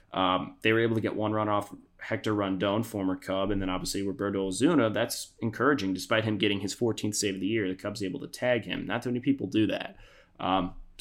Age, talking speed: 20-39, 230 wpm